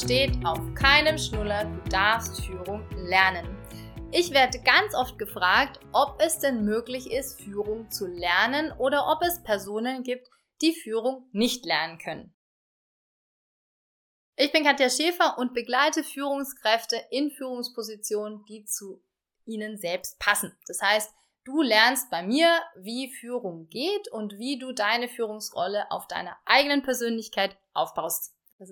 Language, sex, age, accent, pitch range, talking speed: German, female, 30-49, German, 200-260 Hz, 135 wpm